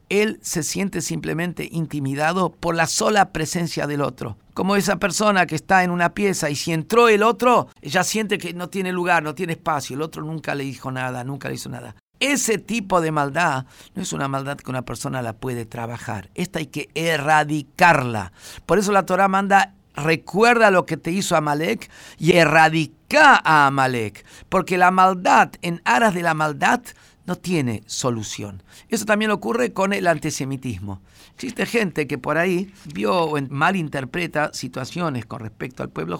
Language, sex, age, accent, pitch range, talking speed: Spanish, male, 50-69, Mexican, 130-180 Hz, 175 wpm